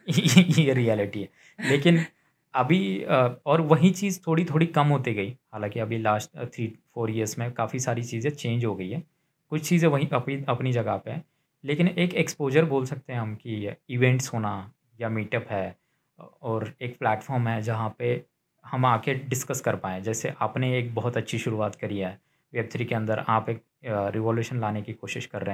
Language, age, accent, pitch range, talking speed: Hindi, 20-39, native, 115-150 Hz, 185 wpm